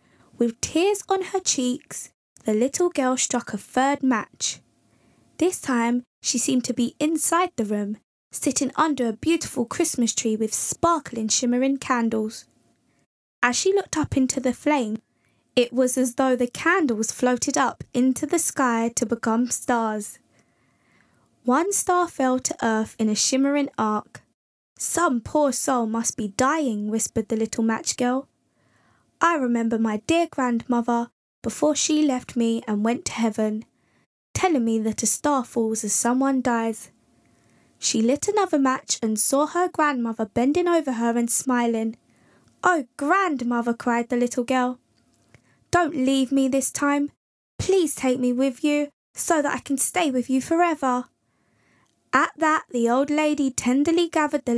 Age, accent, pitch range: 10-29, British, 235-295 Hz